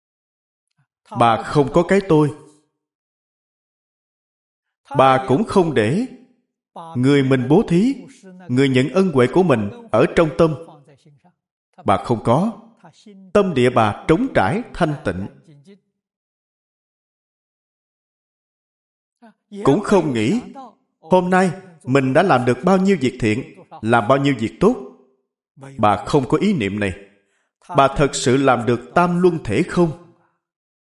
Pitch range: 130-190 Hz